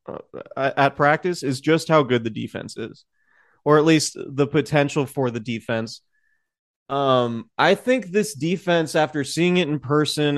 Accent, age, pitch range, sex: American, 20-39, 125-155 Hz, male